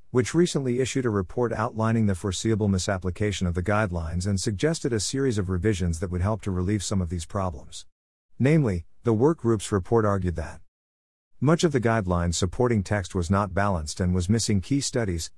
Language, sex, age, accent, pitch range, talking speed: English, male, 50-69, American, 90-115 Hz, 185 wpm